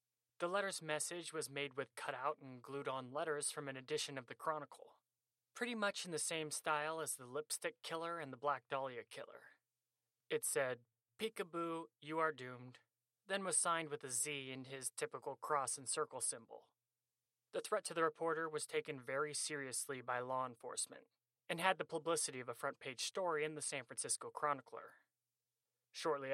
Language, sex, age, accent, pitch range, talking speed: English, male, 30-49, American, 125-165 Hz, 175 wpm